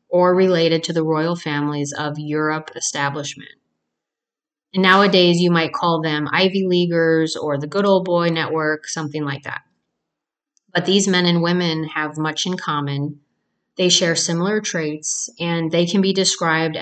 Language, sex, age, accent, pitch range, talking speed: English, female, 30-49, American, 155-185 Hz, 155 wpm